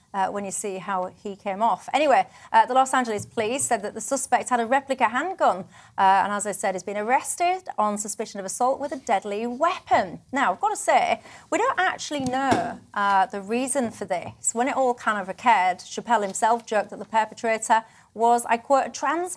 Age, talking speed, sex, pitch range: 30-49, 215 wpm, female, 205-275 Hz